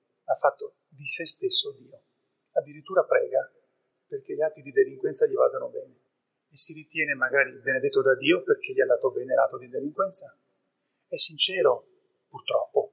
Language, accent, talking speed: Italian, native, 160 wpm